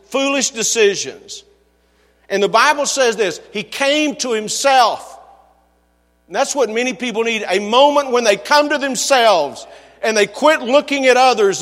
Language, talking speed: English, 155 wpm